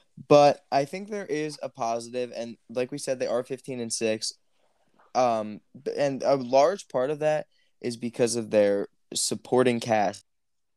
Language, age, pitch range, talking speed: English, 20-39, 110-135 Hz, 160 wpm